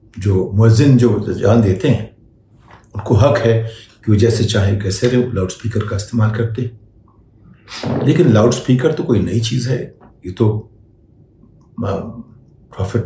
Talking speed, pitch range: 135 wpm, 105-115 Hz